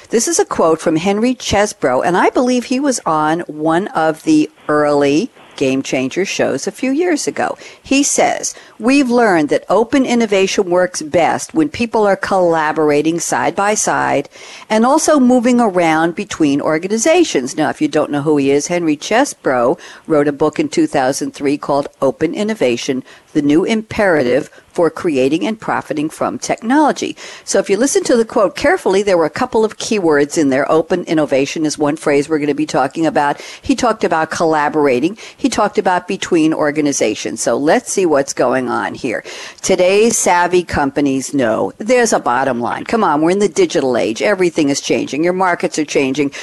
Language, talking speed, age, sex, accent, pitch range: English, 180 wpm, 60-79, female, American, 150-250 Hz